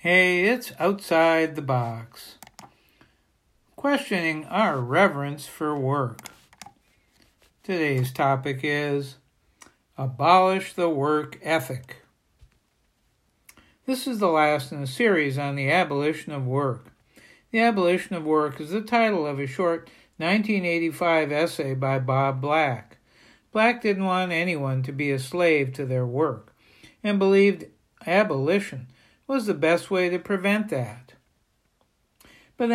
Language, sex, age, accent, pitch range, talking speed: English, male, 60-79, American, 140-185 Hz, 120 wpm